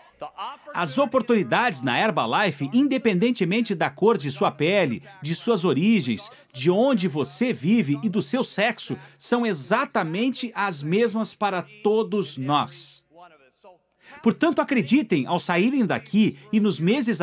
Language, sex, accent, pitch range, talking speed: Portuguese, male, Brazilian, 180-250 Hz, 125 wpm